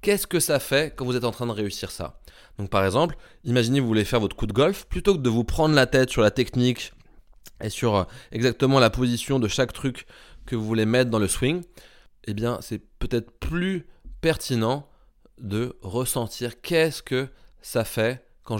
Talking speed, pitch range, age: 200 wpm, 100-125 Hz, 20-39